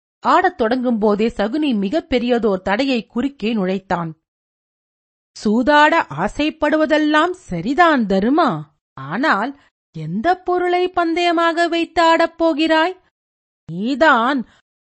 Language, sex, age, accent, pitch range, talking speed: Tamil, female, 40-59, native, 205-295 Hz, 85 wpm